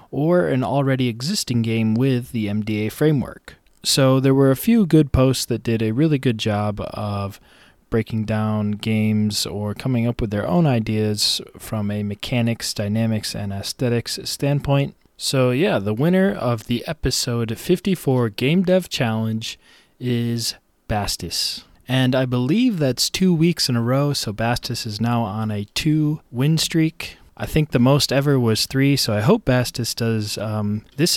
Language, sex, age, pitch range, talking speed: English, male, 20-39, 110-140 Hz, 165 wpm